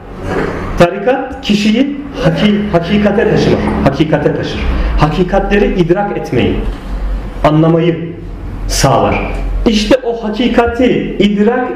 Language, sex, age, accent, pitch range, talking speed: Turkish, male, 40-59, native, 165-240 Hz, 75 wpm